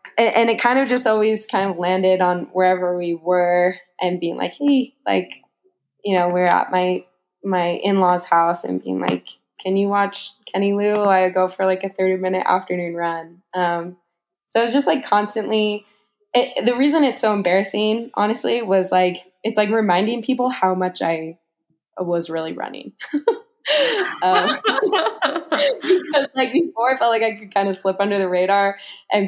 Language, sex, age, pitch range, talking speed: English, female, 10-29, 175-210 Hz, 170 wpm